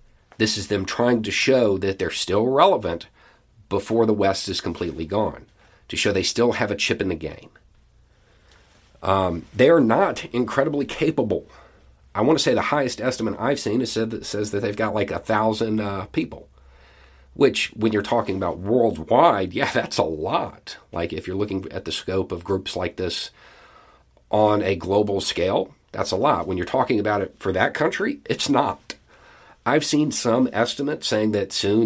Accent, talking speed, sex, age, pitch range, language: American, 185 wpm, male, 40-59, 90-115 Hz, English